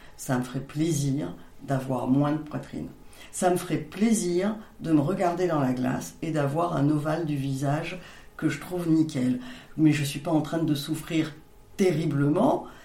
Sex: female